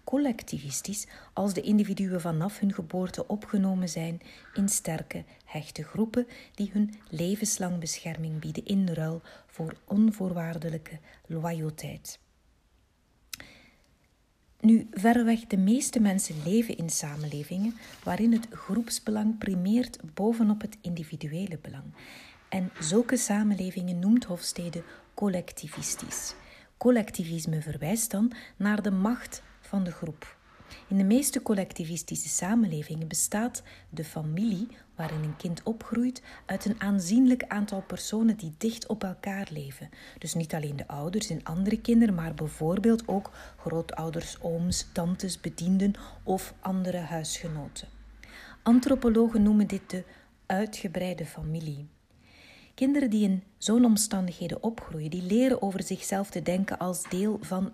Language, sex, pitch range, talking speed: Dutch, female, 170-215 Hz, 120 wpm